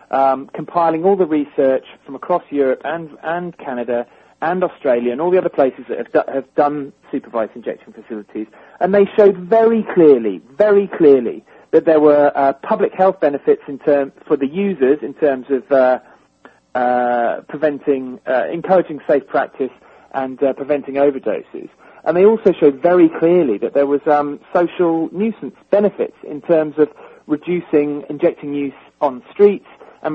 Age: 40-59